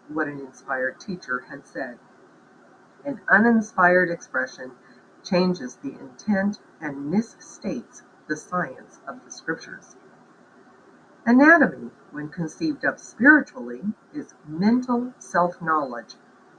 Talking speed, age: 100 wpm, 50-69